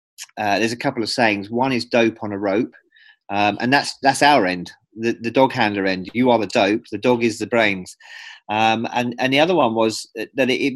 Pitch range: 100-135 Hz